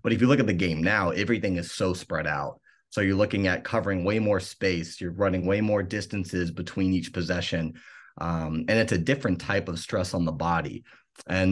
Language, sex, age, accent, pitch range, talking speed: English, male, 30-49, American, 85-100 Hz, 215 wpm